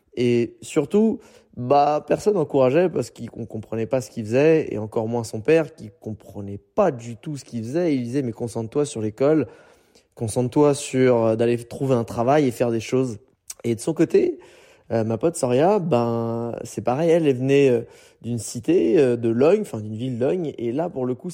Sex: male